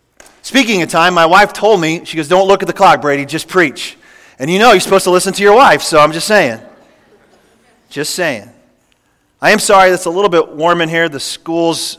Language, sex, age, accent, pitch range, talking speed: English, male, 30-49, American, 150-200 Hz, 225 wpm